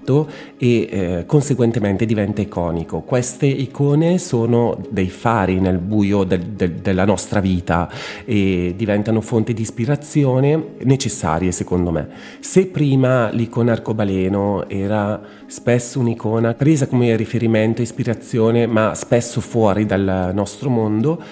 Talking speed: 120 wpm